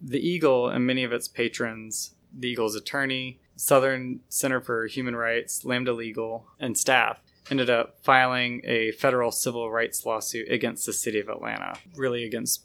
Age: 20-39